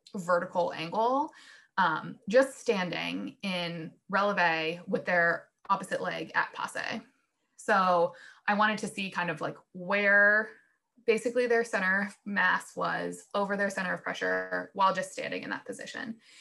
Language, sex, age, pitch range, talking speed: English, female, 20-39, 185-235 Hz, 140 wpm